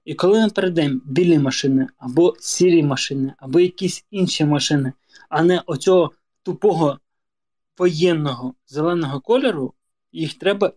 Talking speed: 125 wpm